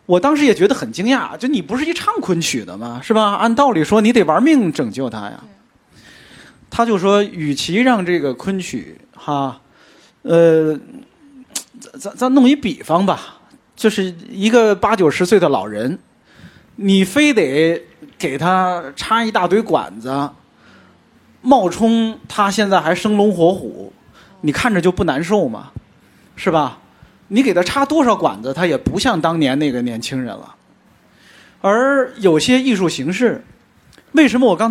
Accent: native